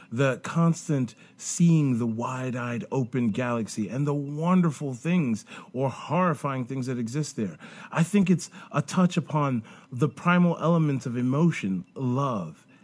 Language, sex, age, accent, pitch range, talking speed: English, male, 40-59, American, 130-170 Hz, 135 wpm